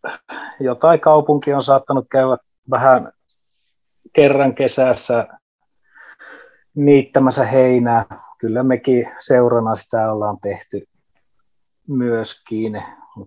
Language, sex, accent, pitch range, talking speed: Finnish, male, native, 110-140 Hz, 75 wpm